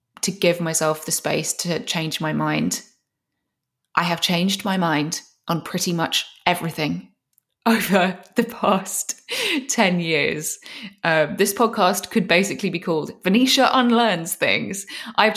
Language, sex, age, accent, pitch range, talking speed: English, female, 20-39, British, 155-190 Hz, 135 wpm